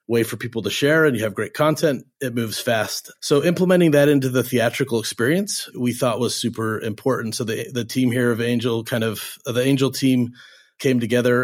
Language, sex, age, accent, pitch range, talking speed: English, male, 30-49, American, 115-130 Hz, 205 wpm